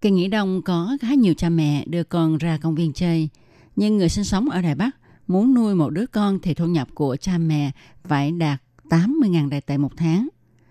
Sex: female